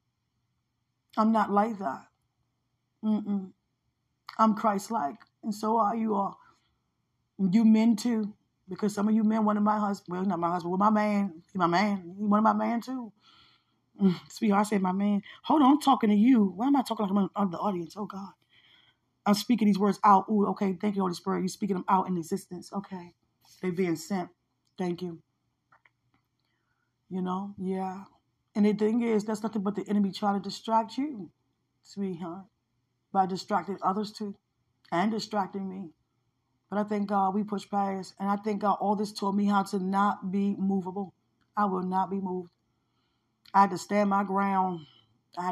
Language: English